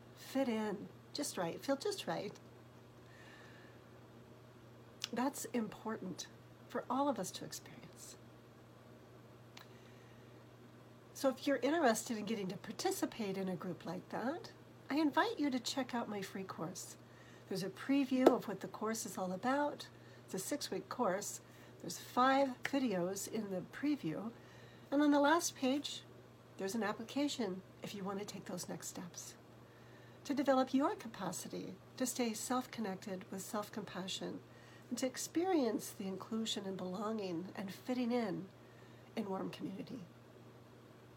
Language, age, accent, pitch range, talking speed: English, 60-79, American, 195-265 Hz, 140 wpm